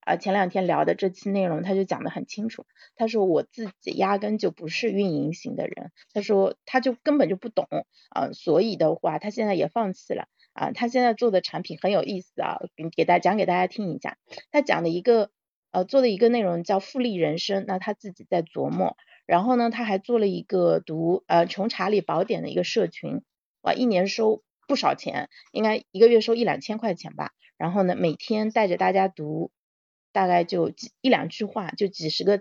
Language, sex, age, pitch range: Chinese, female, 30-49, 175-220 Hz